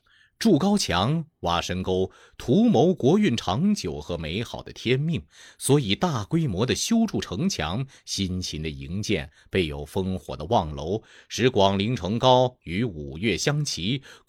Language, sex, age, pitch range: Chinese, male, 30-49, 90-145 Hz